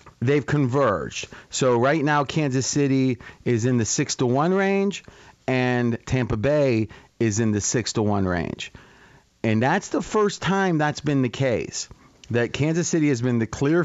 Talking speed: 175 wpm